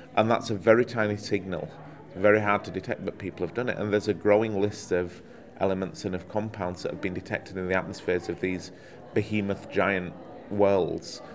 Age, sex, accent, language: 30-49, male, British, English